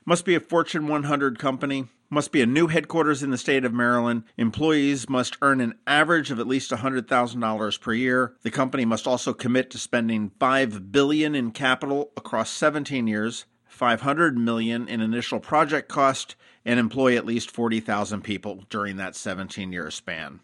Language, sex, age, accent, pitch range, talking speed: English, male, 40-59, American, 110-135 Hz, 170 wpm